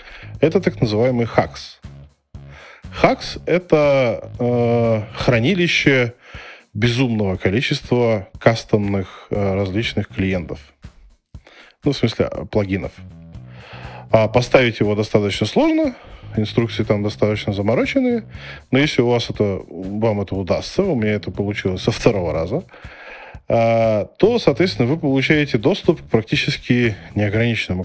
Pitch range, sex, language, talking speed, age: 95-125 Hz, male, Russian, 100 wpm, 20-39